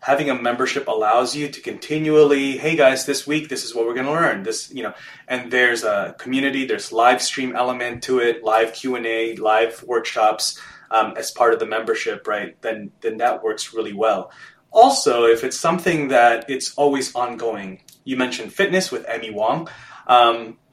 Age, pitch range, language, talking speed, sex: 20-39, 115-150 Hz, English, 190 wpm, male